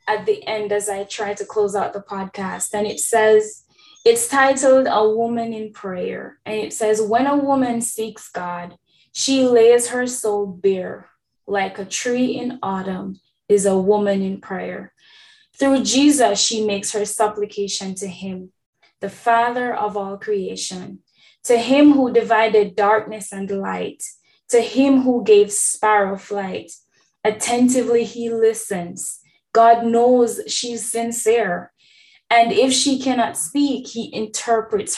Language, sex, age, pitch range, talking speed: English, female, 10-29, 205-250 Hz, 140 wpm